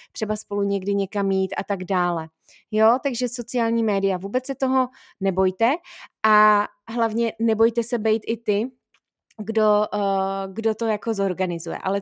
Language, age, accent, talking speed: Czech, 20-39, native, 150 wpm